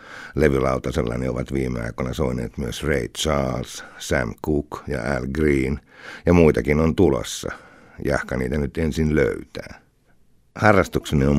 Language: Finnish